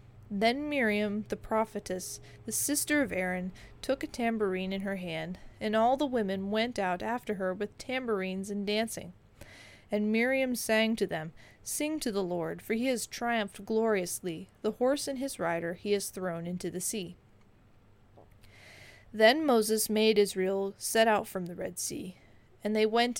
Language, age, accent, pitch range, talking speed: English, 30-49, American, 180-225 Hz, 165 wpm